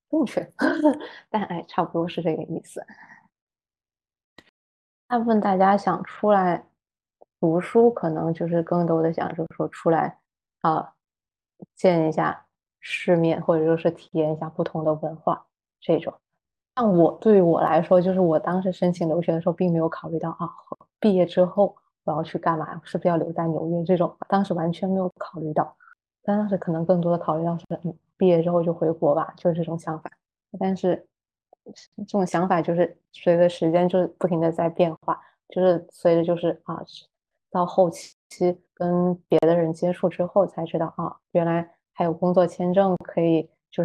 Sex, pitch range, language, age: female, 165-185 Hz, Chinese, 20-39